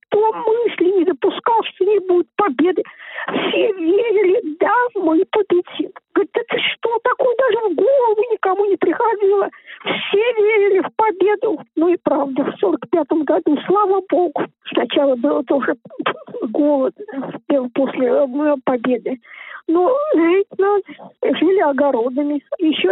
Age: 40-59